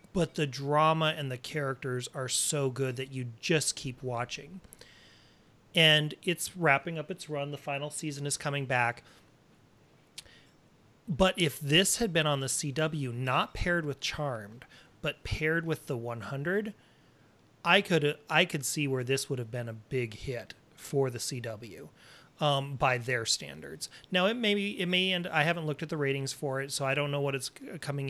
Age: 30-49